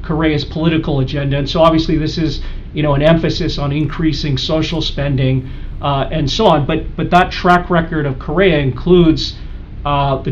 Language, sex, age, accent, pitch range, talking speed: English, male, 40-59, American, 135-160 Hz, 175 wpm